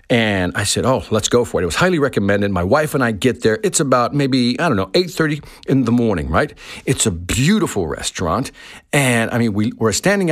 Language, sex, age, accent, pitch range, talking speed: English, male, 50-69, American, 115-170 Hz, 220 wpm